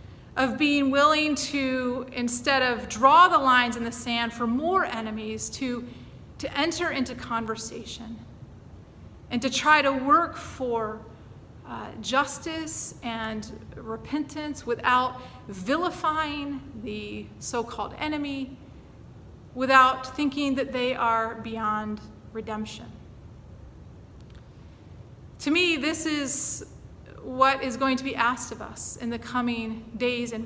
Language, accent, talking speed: English, American, 115 wpm